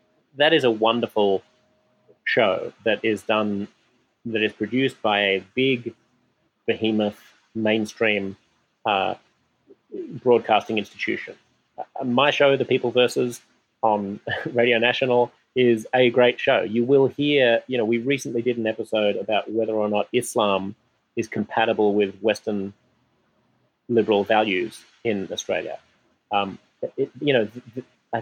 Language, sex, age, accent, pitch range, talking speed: English, male, 30-49, Australian, 105-120 Hz, 130 wpm